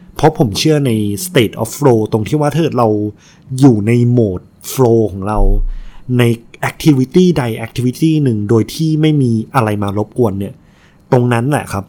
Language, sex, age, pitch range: Thai, male, 20-39, 110-145 Hz